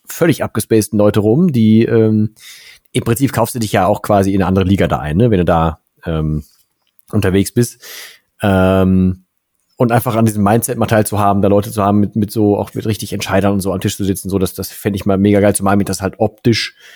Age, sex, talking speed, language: 40-59, male, 240 wpm, German